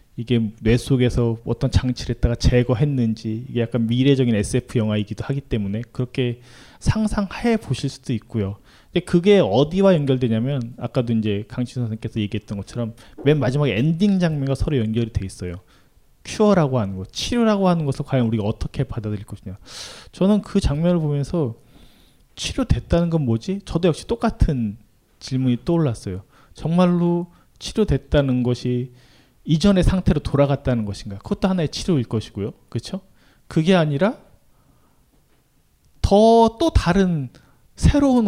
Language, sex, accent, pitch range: Korean, male, native, 115-180 Hz